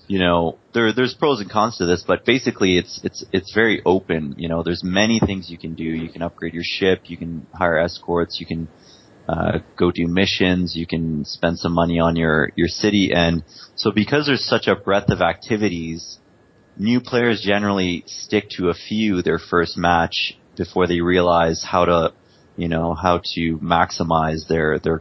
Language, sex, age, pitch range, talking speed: English, male, 20-39, 85-95 Hz, 190 wpm